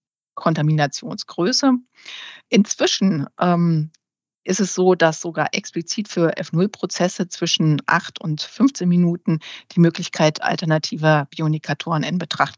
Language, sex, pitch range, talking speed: German, female, 155-195 Hz, 105 wpm